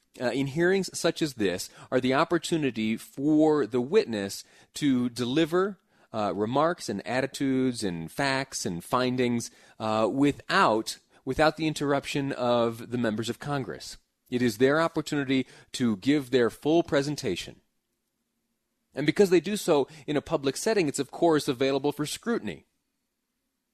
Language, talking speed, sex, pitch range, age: English, 140 wpm, male, 105-140 Hz, 30-49